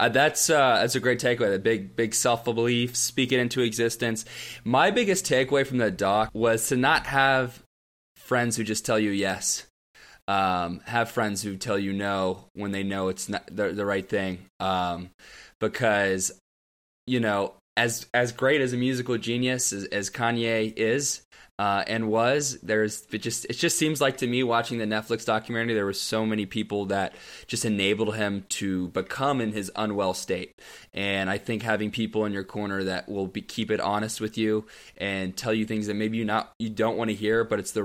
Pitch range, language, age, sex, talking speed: 100-120 Hz, English, 20-39, male, 195 wpm